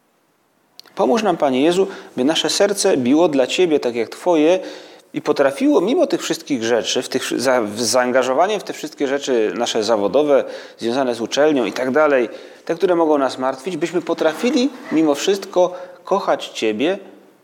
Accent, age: native, 30-49